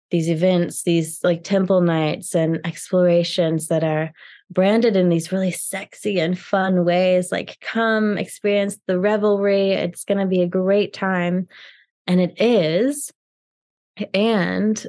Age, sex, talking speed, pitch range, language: 20-39, female, 135 wpm, 160-185 Hz, English